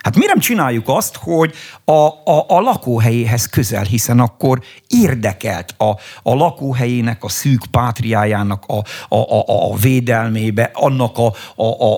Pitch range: 105-135 Hz